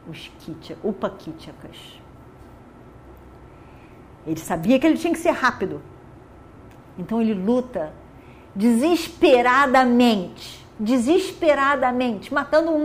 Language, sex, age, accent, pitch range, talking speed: Portuguese, female, 50-69, Brazilian, 185-285 Hz, 85 wpm